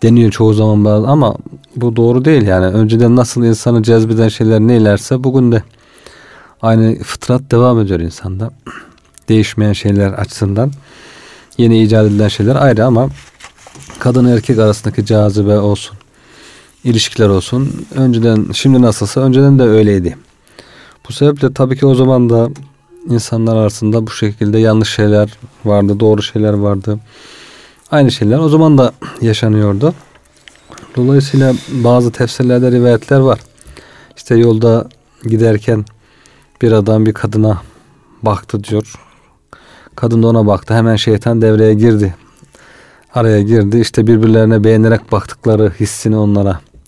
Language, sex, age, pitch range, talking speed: Turkish, male, 40-59, 105-125 Hz, 125 wpm